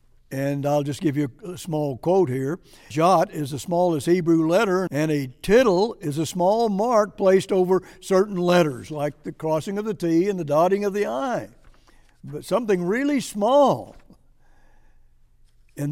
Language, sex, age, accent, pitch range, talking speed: English, male, 60-79, American, 155-205 Hz, 160 wpm